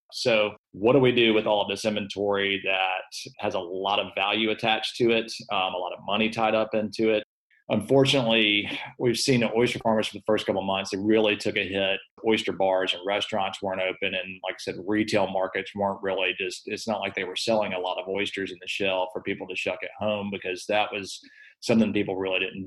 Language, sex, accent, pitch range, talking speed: English, male, American, 100-110 Hz, 230 wpm